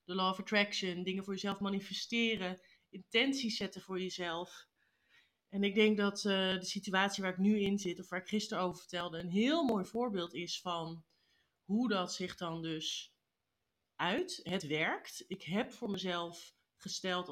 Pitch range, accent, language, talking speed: 170-205 Hz, Dutch, Dutch, 170 wpm